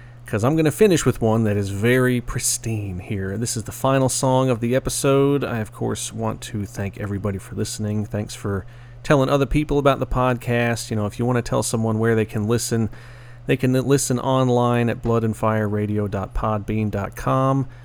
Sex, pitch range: male, 105-125 Hz